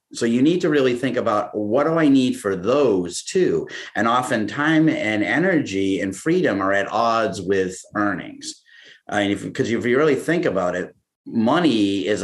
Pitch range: 100-130 Hz